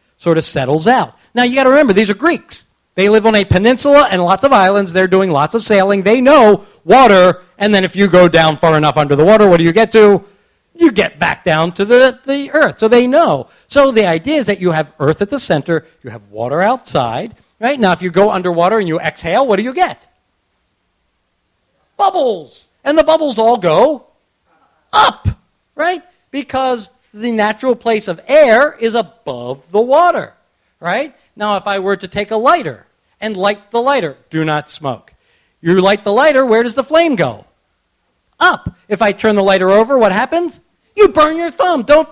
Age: 40-59